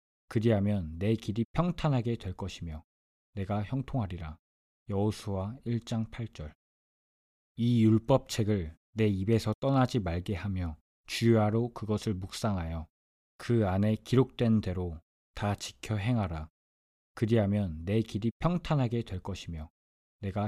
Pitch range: 80-115 Hz